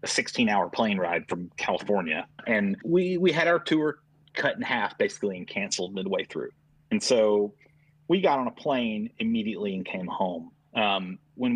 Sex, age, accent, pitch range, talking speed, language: male, 30-49, American, 110-165 Hz, 170 wpm, English